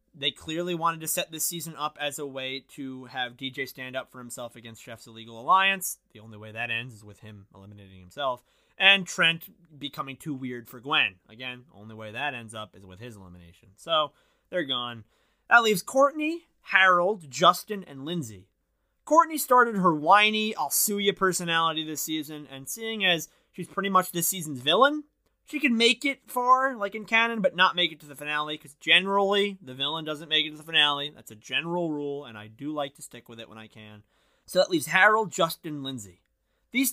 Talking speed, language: 205 wpm, English